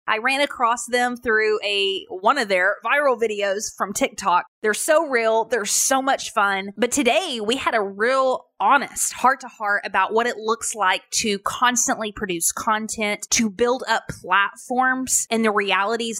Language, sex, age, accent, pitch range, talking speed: English, female, 20-39, American, 200-245 Hz, 170 wpm